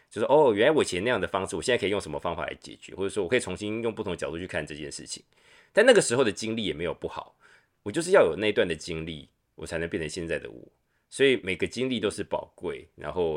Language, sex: Chinese, male